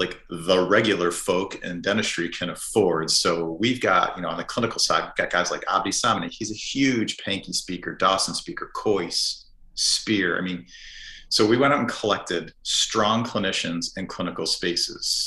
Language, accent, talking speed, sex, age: English, American, 175 wpm, male, 40-59